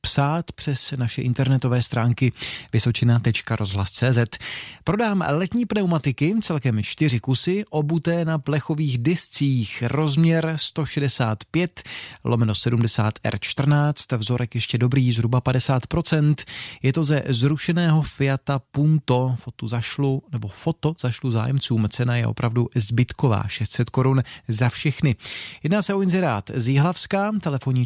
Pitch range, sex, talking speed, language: 120-150 Hz, male, 110 wpm, Czech